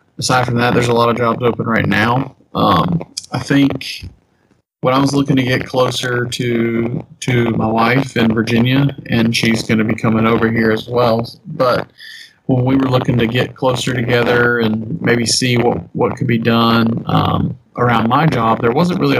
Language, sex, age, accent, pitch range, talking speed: English, male, 40-59, American, 115-130 Hz, 190 wpm